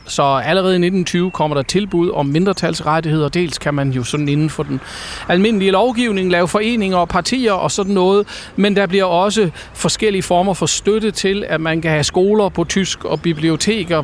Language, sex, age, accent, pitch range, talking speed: Danish, male, 40-59, native, 145-190 Hz, 190 wpm